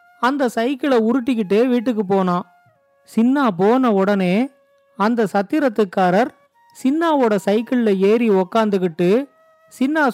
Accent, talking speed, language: native, 90 wpm, Tamil